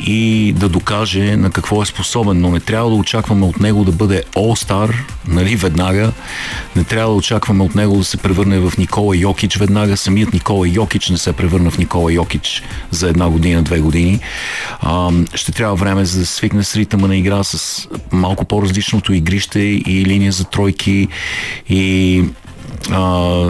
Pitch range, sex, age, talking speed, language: 90-105 Hz, male, 40-59, 170 wpm, Bulgarian